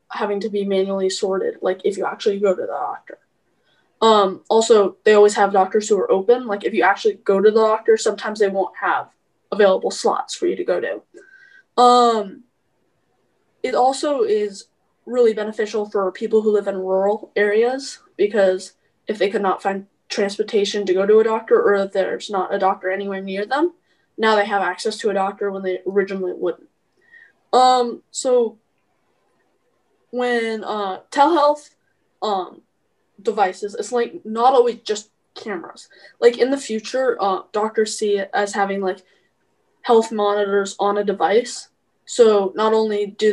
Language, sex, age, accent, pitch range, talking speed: English, female, 10-29, American, 200-270 Hz, 165 wpm